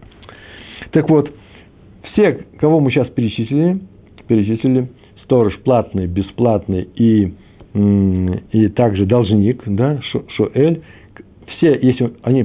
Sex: male